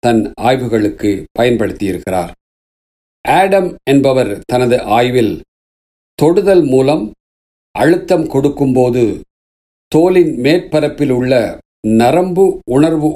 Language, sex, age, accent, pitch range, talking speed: Tamil, male, 50-69, native, 110-155 Hz, 70 wpm